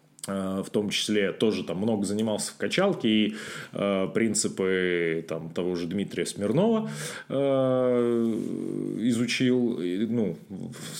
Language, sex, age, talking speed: Russian, male, 20-39, 115 wpm